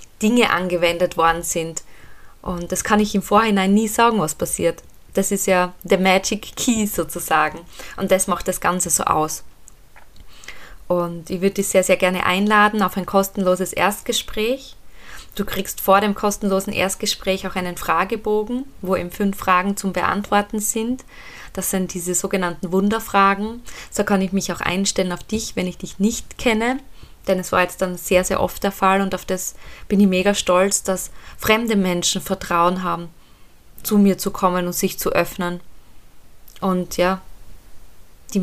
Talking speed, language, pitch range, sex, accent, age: 165 wpm, German, 175-195 Hz, female, German, 20-39